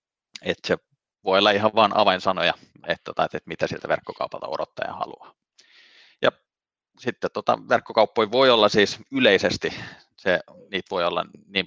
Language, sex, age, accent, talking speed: Finnish, male, 30-49, native, 140 wpm